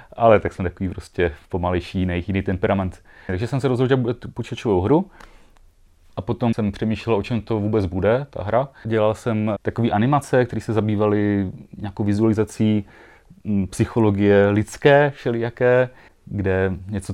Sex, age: male, 30-49